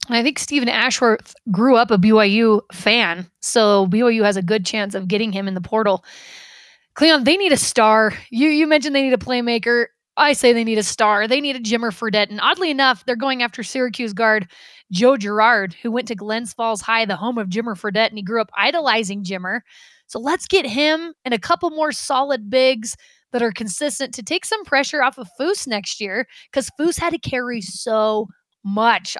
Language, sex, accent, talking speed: English, female, American, 205 wpm